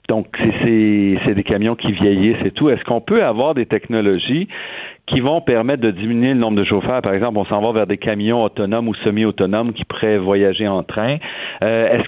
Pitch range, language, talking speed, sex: 100-125 Hz, French, 215 wpm, male